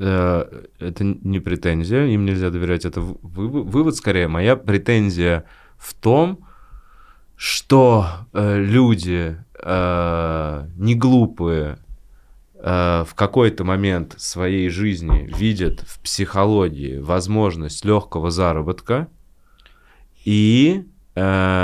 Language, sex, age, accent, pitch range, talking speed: Russian, male, 20-39, native, 85-110 Hz, 90 wpm